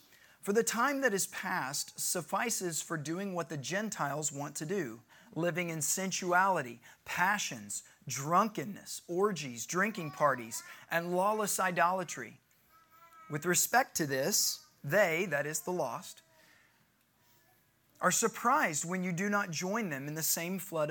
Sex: male